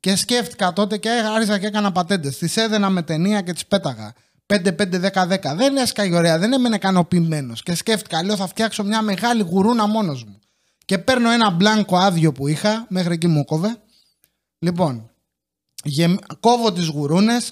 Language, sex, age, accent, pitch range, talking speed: English, male, 30-49, Greek, 170-220 Hz, 160 wpm